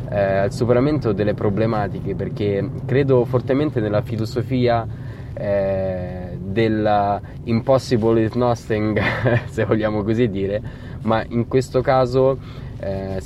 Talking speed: 105 wpm